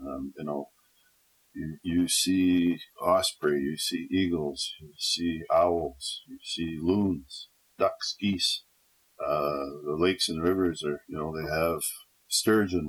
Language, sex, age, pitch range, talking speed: English, male, 50-69, 80-95 Hz, 135 wpm